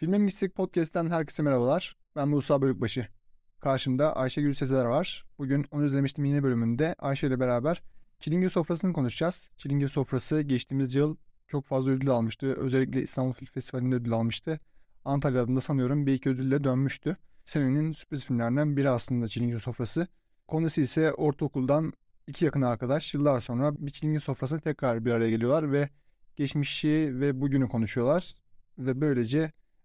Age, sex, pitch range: 30-49, male, 130-150 Hz